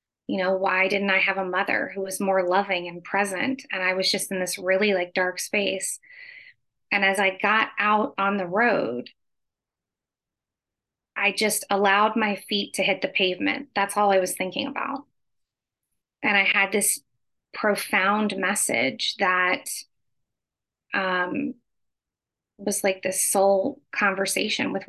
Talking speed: 145 wpm